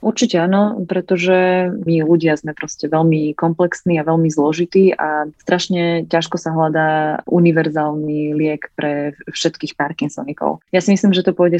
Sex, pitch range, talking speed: female, 150-170 Hz, 145 wpm